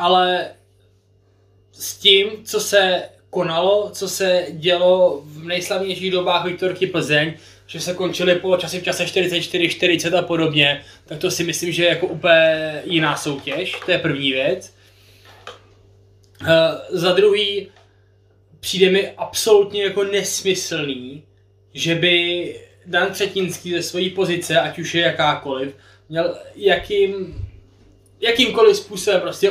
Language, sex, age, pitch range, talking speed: Czech, male, 20-39, 145-185 Hz, 125 wpm